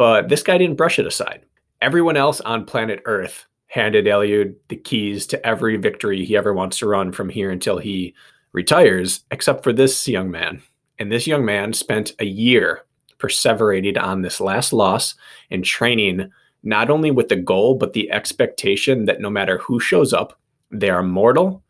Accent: American